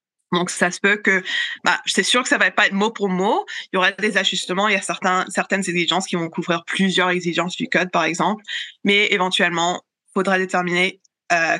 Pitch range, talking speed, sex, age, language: 165-190 Hz, 215 wpm, female, 20-39, French